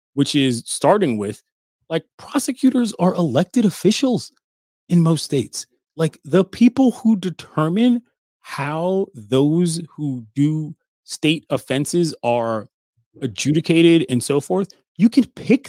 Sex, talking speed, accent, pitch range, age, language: male, 120 wpm, American, 135-205 Hz, 30-49, English